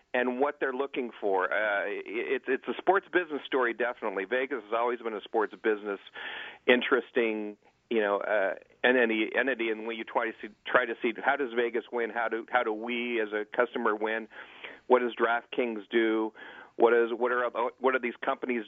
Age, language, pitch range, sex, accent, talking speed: 40-59, English, 110-140 Hz, male, American, 195 wpm